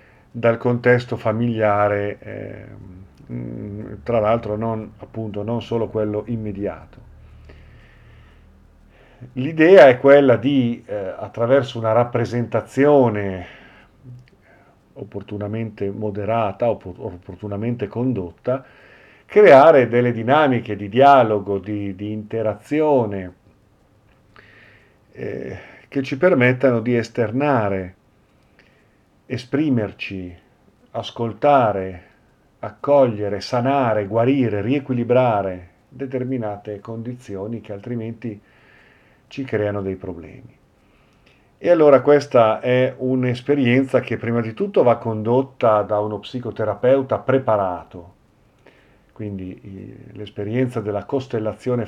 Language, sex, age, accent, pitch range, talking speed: Italian, male, 50-69, native, 100-125 Hz, 80 wpm